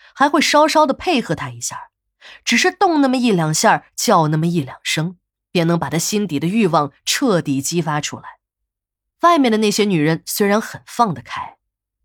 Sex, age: female, 20-39